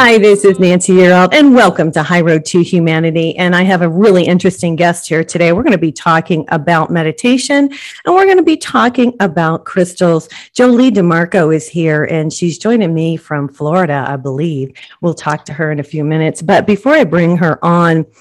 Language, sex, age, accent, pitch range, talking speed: English, female, 40-59, American, 160-215 Hz, 205 wpm